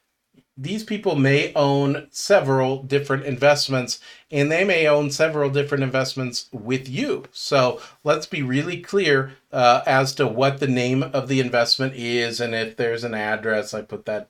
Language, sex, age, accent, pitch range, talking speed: English, male, 40-59, American, 120-145 Hz, 165 wpm